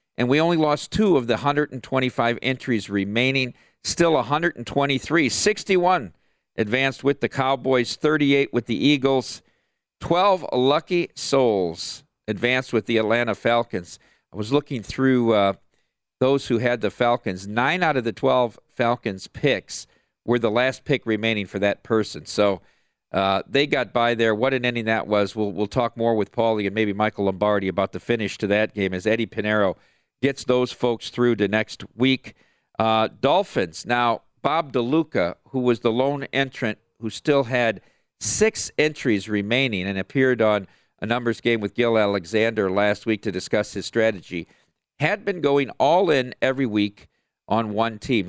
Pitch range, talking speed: 105-130 Hz, 165 wpm